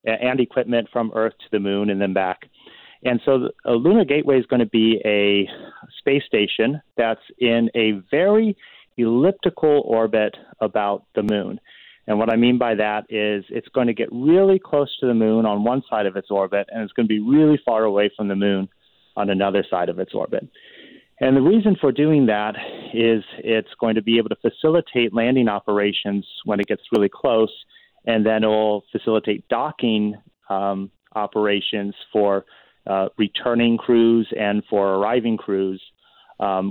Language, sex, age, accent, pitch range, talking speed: English, male, 40-59, American, 105-125 Hz, 180 wpm